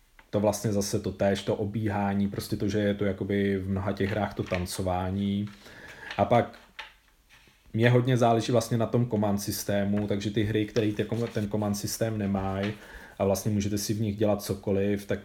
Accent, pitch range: native, 95-105 Hz